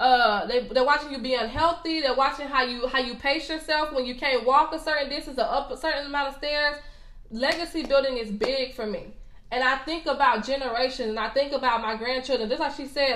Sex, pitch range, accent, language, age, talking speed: female, 235-275 Hz, American, English, 20-39, 230 wpm